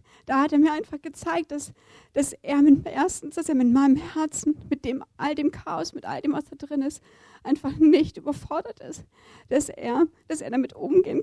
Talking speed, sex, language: 205 wpm, female, German